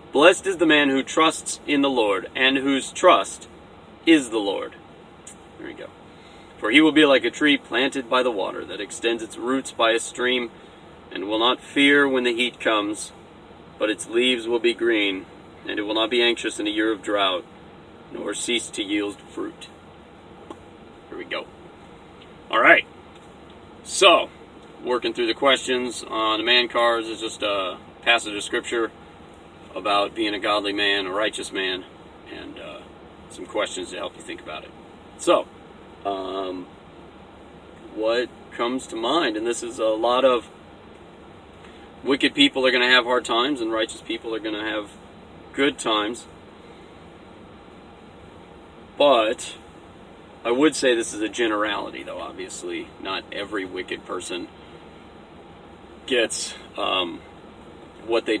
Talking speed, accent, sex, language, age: 155 wpm, American, male, English, 30-49